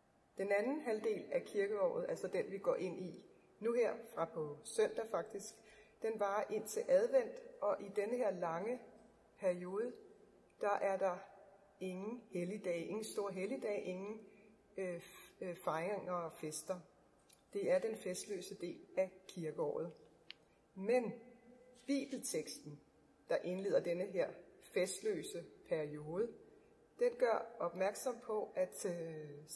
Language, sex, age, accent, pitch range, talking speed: Danish, female, 30-49, native, 185-275 Hz, 125 wpm